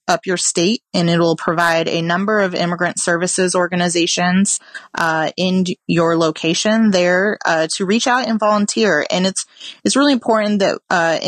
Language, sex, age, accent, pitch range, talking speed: English, female, 30-49, American, 165-195 Hz, 165 wpm